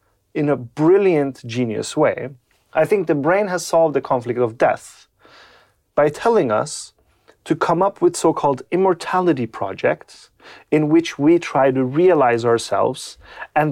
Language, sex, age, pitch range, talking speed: English, male, 30-49, 125-165 Hz, 145 wpm